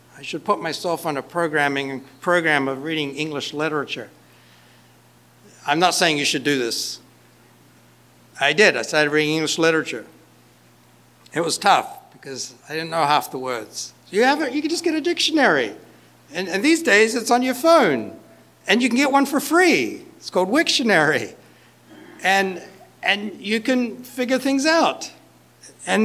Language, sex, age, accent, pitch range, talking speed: English, male, 60-79, American, 150-235 Hz, 165 wpm